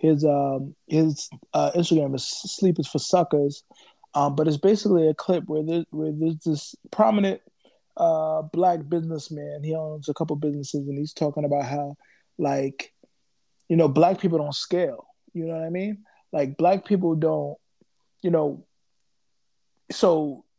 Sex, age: male, 20-39